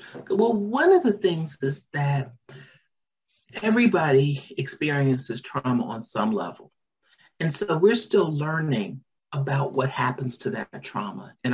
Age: 50-69